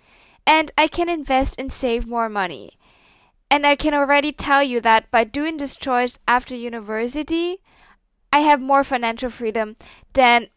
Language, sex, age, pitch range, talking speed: English, female, 10-29, 220-265 Hz, 155 wpm